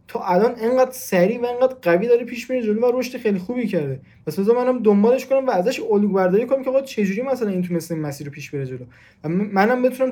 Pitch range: 165-235 Hz